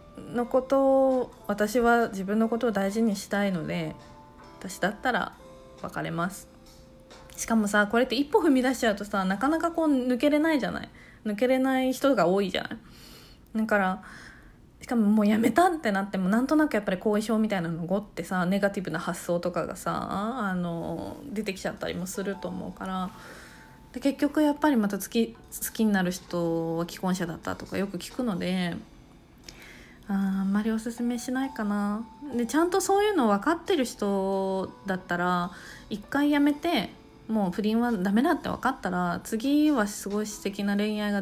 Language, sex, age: Japanese, female, 20-39